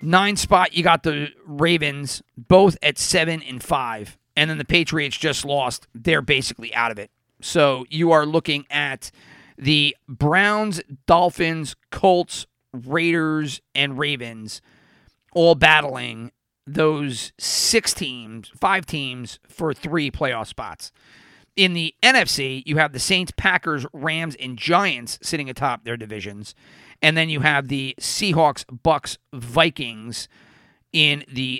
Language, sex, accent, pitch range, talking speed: English, male, American, 120-160 Hz, 135 wpm